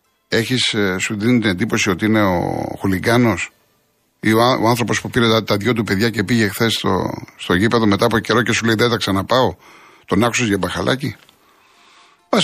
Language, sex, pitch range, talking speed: Greek, male, 115-150 Hz, 195 wpm